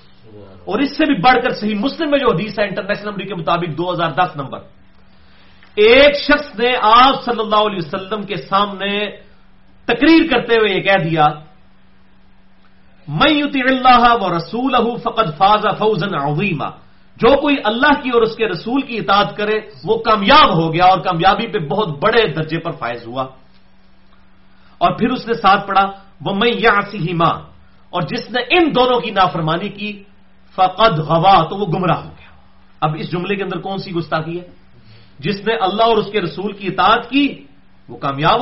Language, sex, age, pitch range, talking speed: English, male, 40-59, 160-235 Hz, 130 wpm